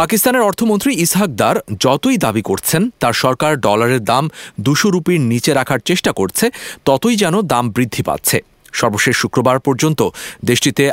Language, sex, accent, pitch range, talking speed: English, male, Indian, 100-135 Hz, 180 wpm